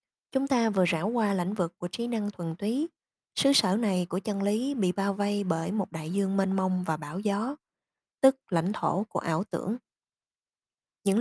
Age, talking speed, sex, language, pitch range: 20-39, 200 wpm, female, Vietnamese, 175-220 Hz